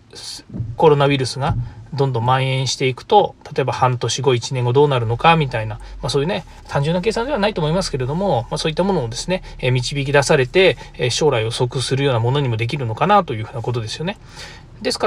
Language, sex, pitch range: Japanese, male, 130-190 Hz